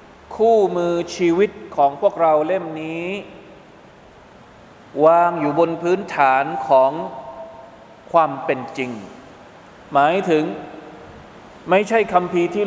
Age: 20-39